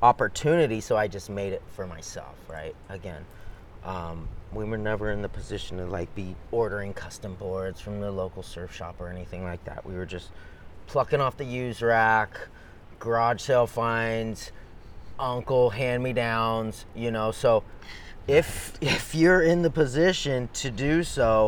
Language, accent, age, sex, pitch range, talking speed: English, American, 30-49, male, 100-120 Hz, 160 wpm